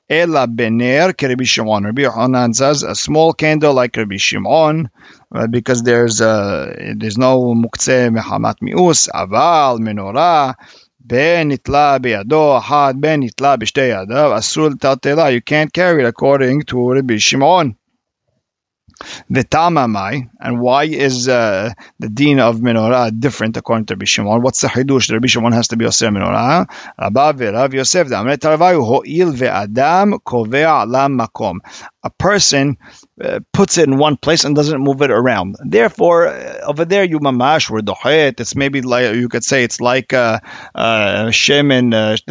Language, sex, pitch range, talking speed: English, male, 115-145 Hz, 155 wpm